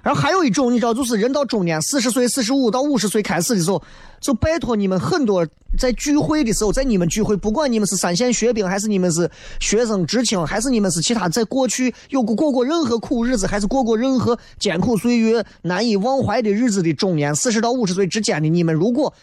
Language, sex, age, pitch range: Chinese, male, 20-39, 180-250 Hz